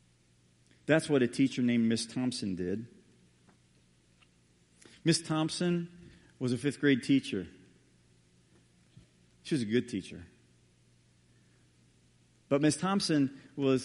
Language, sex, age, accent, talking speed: English, male, 40-59, American, 105 wpm